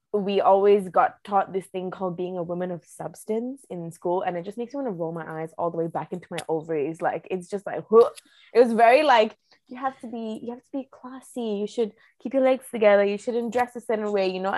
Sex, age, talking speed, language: female, 20-39, 255 wpm, English